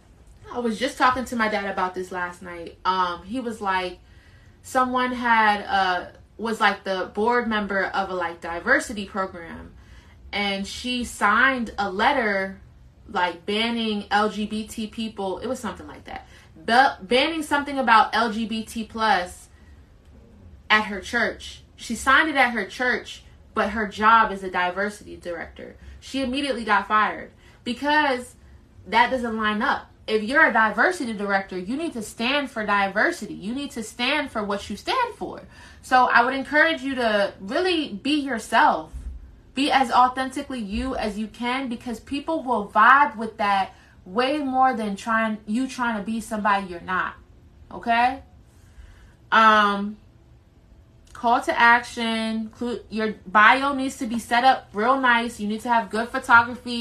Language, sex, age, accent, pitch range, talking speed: English, female, 20-39, American, 200-250 Hz, 155 wpm